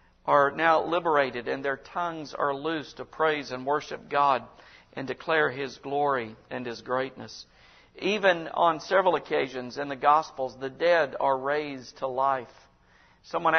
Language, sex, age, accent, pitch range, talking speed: English, male, 50-69, American, 135-170 Hz, 150 wpm